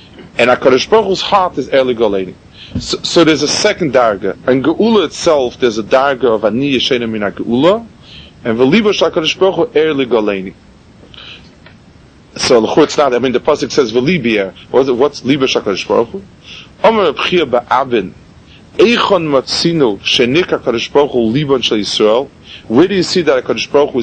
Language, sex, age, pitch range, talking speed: English, male, 30-49, 110-165 Hz, 170 wpm